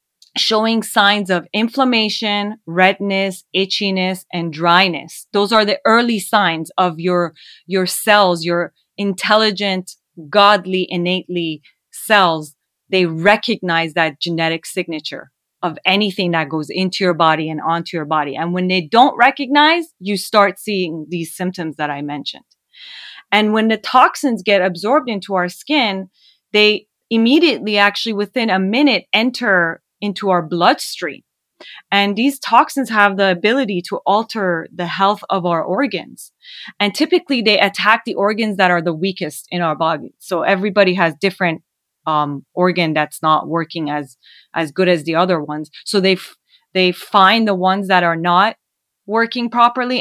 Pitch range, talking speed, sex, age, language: 170-215 Hz, 150 wpm, female, 30-49, English